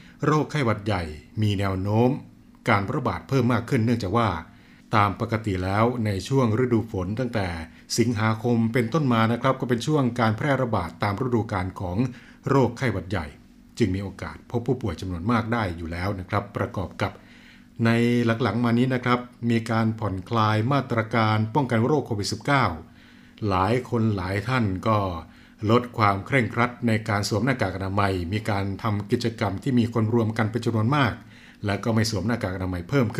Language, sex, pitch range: Thai, male, 100-125 Hz